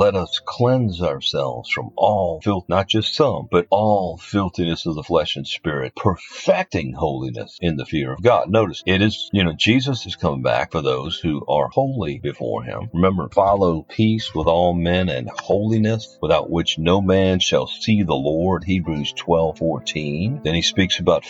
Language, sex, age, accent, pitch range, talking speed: English, male, 50-69, American, 85-105 Hz, 175 wpm